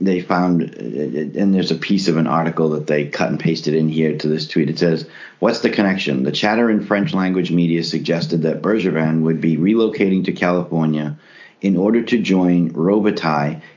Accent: American